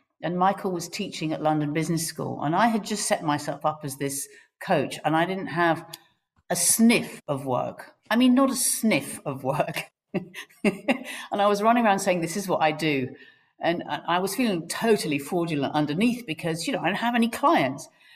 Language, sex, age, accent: English, female, 50-69, British